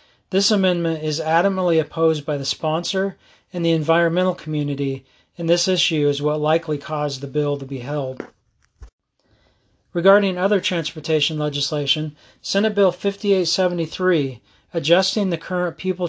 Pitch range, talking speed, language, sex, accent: 145-180 Hz, 130 wpm, English, male, American